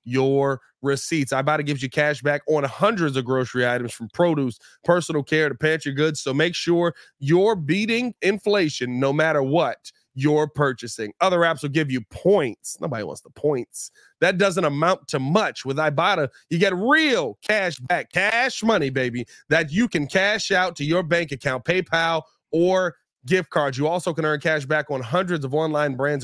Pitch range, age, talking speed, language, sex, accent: 140-180 Hz, 30-49, 180 wpm, English, male, American